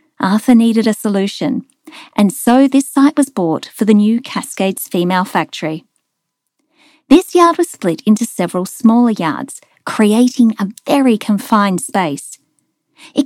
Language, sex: English, female